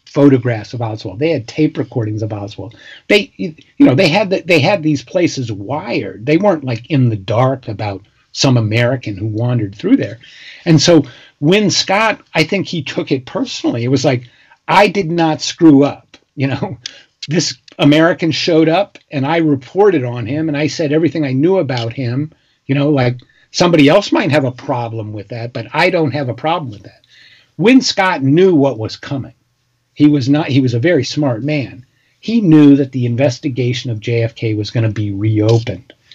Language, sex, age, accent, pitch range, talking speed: English, male, 50-69, American, 120-150 Hz, 195 wpm